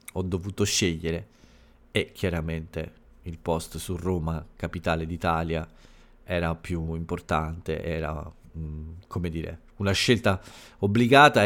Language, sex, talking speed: Italian, male, 105 wpm